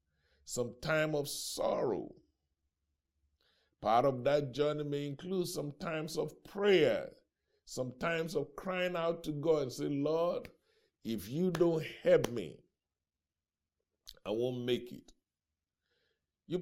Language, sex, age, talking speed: English, male, 60-79, 125 wpm